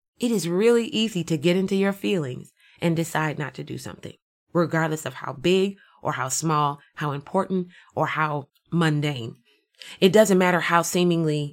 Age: 20-39